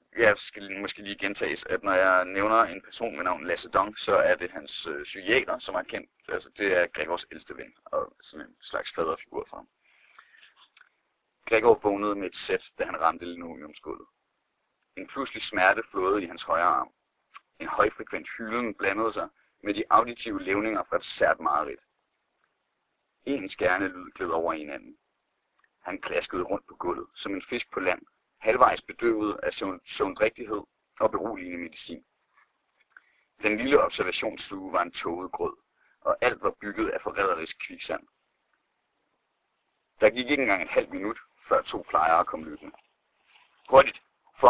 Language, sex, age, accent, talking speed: Danish, male, 30-49, native, 160 wpm